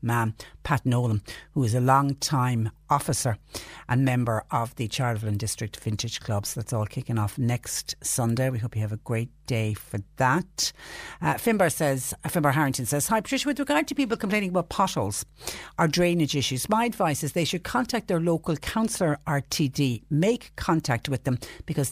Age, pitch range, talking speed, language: 60-79, 130-165 Hz, 180 wpm, English